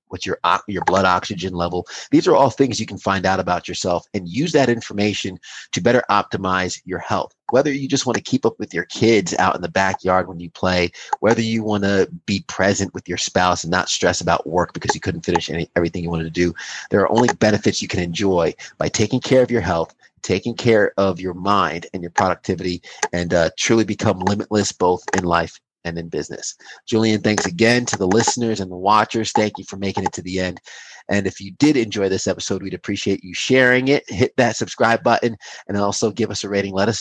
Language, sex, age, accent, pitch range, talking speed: English, male, 30-49, American, 90-115 Hz, 225 wpm